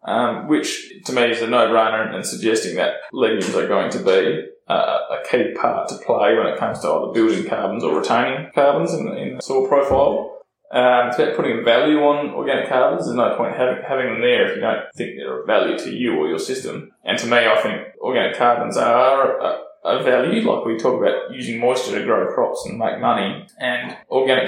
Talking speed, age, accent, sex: 220 wpm, 20-39, Australian, male